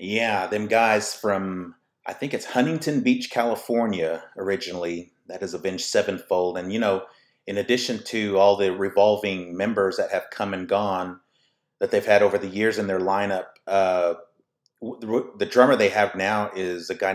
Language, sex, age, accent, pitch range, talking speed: English, male, 30-49, American, 90-110 Hz, 175 wpm